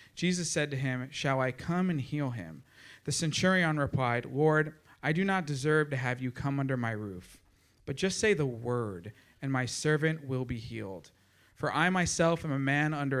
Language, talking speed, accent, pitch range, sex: English, 195 wpm, American, 110-155 Hz, male